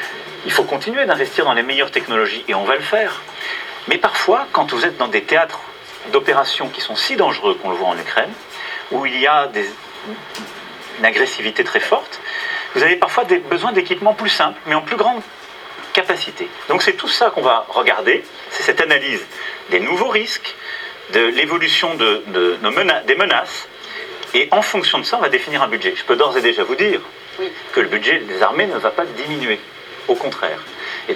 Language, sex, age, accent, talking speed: French, male, 40-59, French, 200 wpm